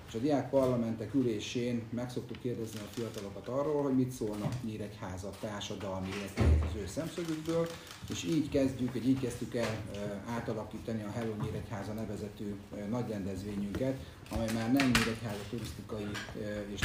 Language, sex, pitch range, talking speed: Hungarian, male, 100-115 Hz, 125 wpm